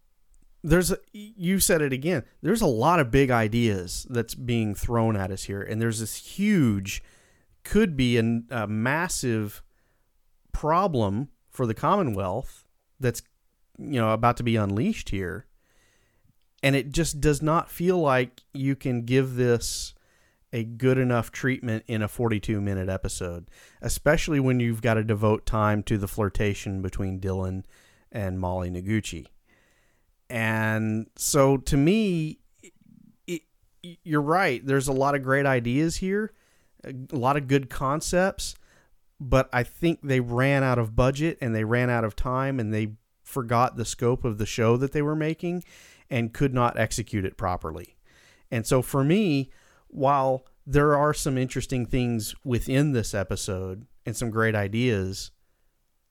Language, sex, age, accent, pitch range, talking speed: English, male, 40-59, American, 105-140 Hz, 150 wpm